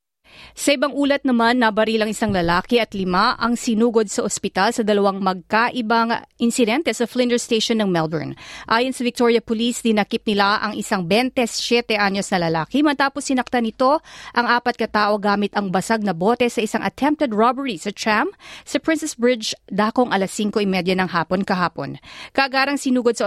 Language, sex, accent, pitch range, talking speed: Filipino, female, native, 205-245 Hz, 160 wpm